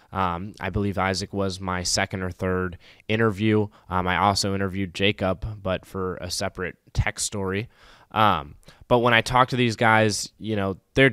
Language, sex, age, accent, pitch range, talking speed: English, male, 20-39, American, 95-105 Hz, 175 wpm